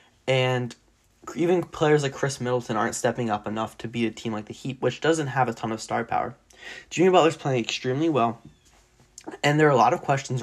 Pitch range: 115-140 Hz